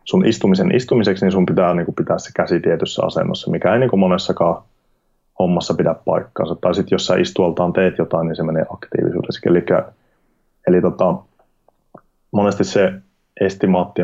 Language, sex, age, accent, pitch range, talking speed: Finnish, male, 30-49, native, 85-95 Hz, 165 wpm